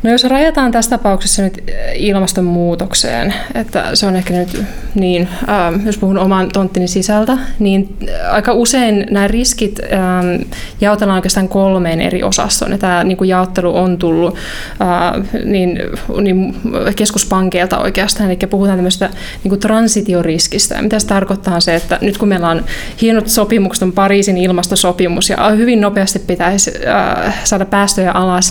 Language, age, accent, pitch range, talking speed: Finnish, 20-39, native, 185-210 Hz, 145 wpm